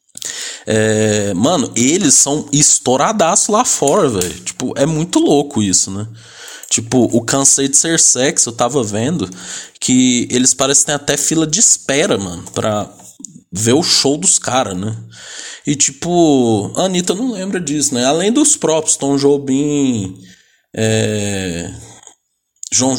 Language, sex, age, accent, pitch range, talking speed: Portuguese, male, 20-39, Brazilian, 110-140 Hz, 130 wpm